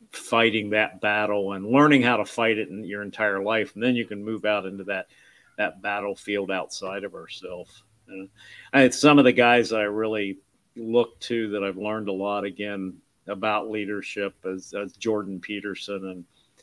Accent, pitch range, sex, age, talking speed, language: American, 100-120 Hz, male, 50-69, 180 wpm, English